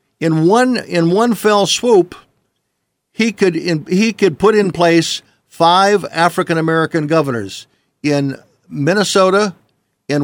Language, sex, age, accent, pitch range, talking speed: English, male, 50-69, American, 140-170 Hz, 115 wpm